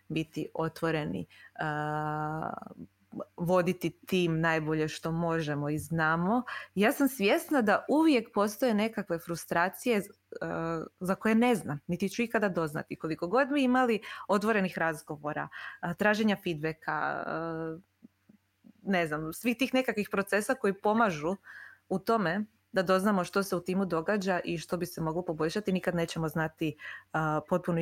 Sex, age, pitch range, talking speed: female, 20-39, 155-205 Hz, 130 wpm